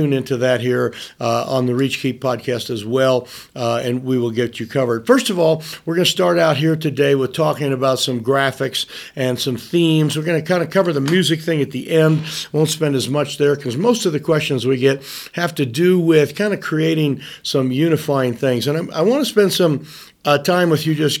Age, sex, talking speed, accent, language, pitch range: 50-69, male, 230 wpm, American, English, 130-165 Hz